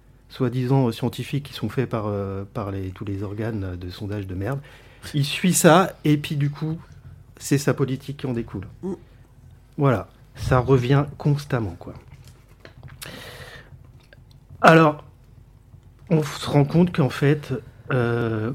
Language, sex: French, male